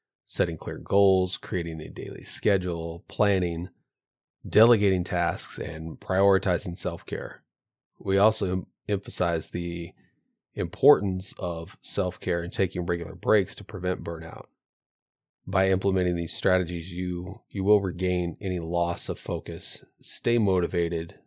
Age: 30-49